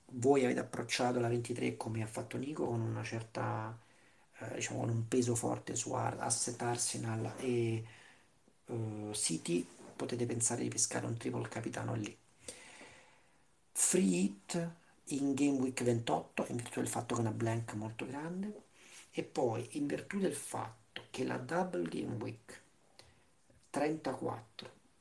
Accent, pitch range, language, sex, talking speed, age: native, 115-130 Hz, Italian, male, 140 wpm, 40-59